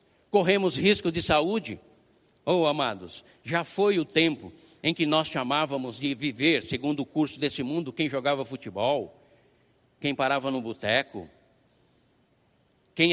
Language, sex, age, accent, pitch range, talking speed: Portuguese, male, 60-79, Brazilian, 145-195 Hz, 135 wpm